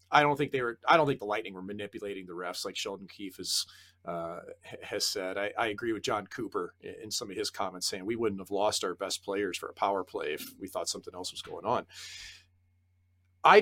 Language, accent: English, American